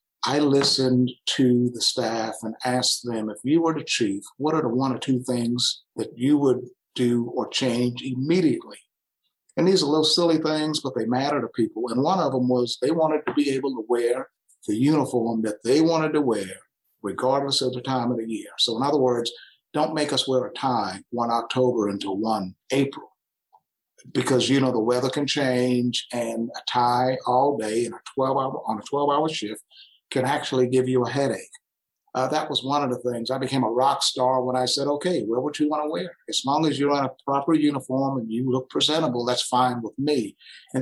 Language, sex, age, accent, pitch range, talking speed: English, male, 50-69, American, 120-145 Hz, 215 wpm